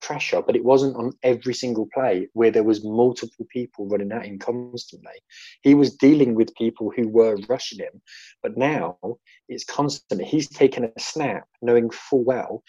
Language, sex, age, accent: English, male, 20-39, British